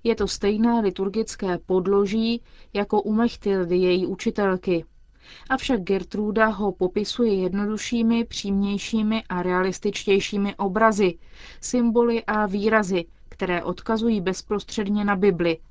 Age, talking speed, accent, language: 30-49, 100 wpm, native, Czech